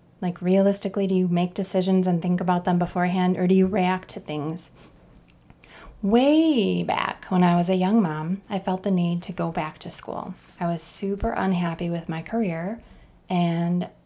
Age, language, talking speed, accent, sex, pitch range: 20-39, English, 180 wpm, American, female, 175-195 Hz